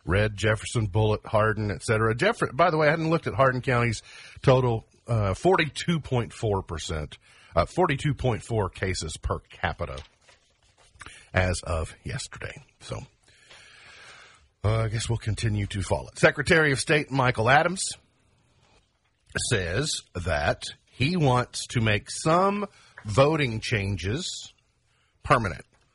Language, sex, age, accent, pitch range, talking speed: English, male, 50-69, American, 100-130 Hz, 115 wpm